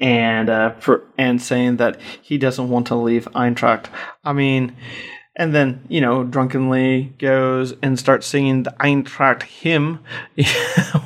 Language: English